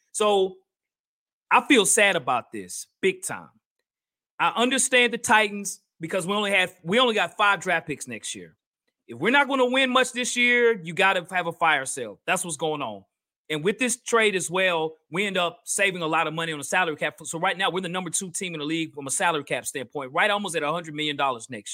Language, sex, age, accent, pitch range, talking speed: English, male, 30-49, American, 165-245 Hz, 230 wpm